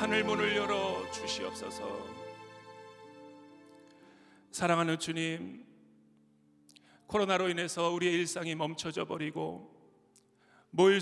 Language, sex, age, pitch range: Korean, male, 40-59, 170-205 Hz